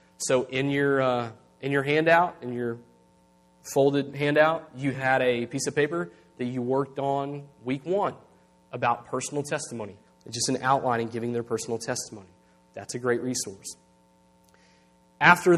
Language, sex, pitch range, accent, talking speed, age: English, male, 120-150 Hz, American, 155 wpm, 30-49